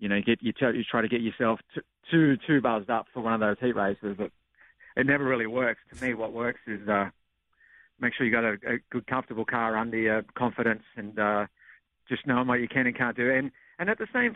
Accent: Australian